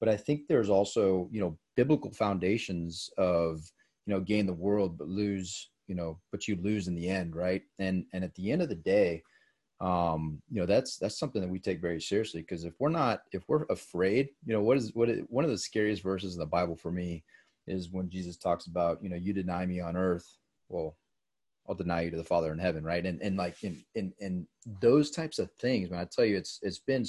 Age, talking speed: 30-49, 235 wpm